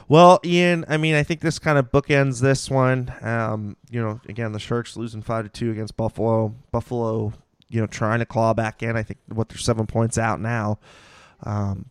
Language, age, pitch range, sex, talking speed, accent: English, 20-39, 110-130 Hz, male, 205 wpm, American